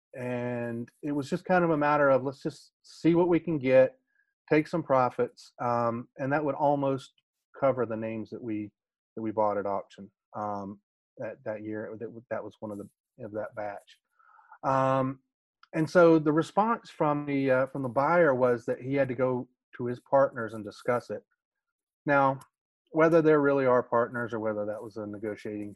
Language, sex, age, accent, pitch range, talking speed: English, male, 30-49, American, 110-145 Hz, 190 wpm